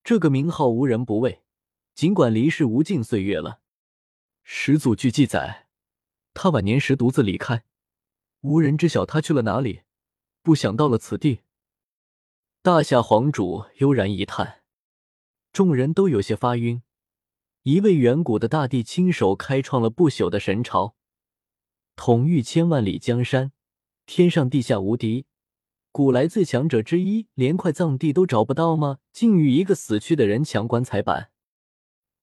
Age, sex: 20-39, male